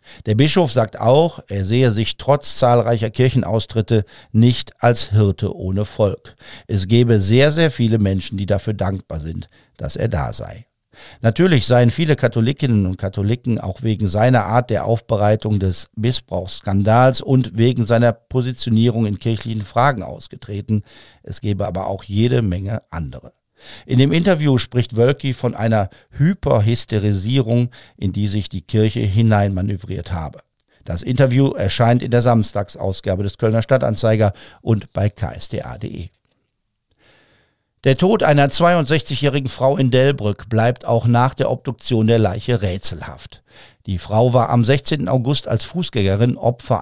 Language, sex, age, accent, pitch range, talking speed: German, male, 50-69, German, 105-125 Hz, 140 wpm